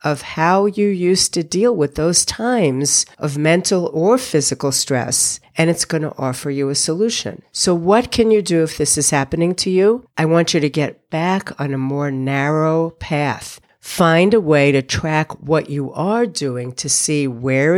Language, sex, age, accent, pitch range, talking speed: English, female, 50-69, American, 140-185 Hz, 190 wpm